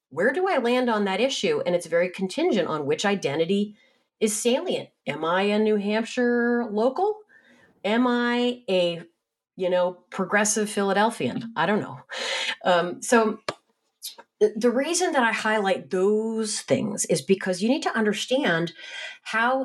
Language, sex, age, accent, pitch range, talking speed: English, female, 40-59, American, 175-240 Hz, 145 wpm